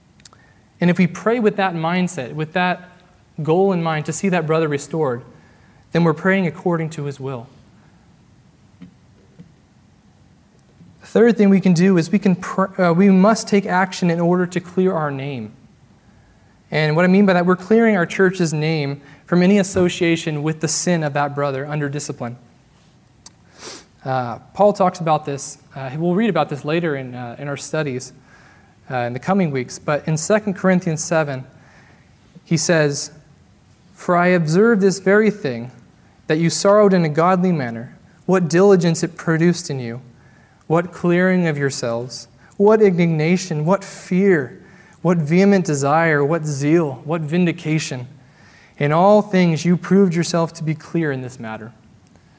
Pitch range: 145-185 Hz